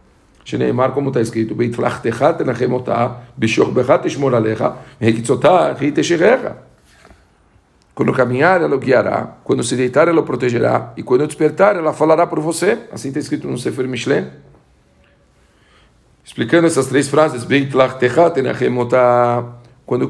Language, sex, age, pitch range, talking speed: Portuguese, male, 50-69, 115-140 Hz, 105 wpm